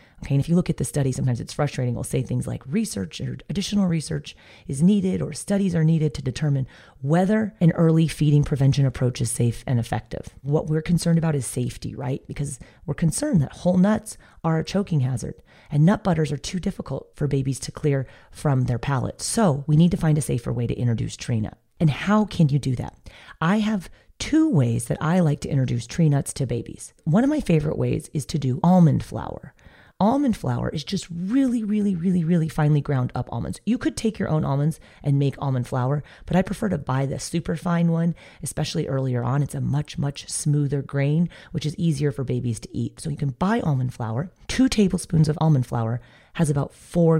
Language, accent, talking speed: English, American, 215 wpm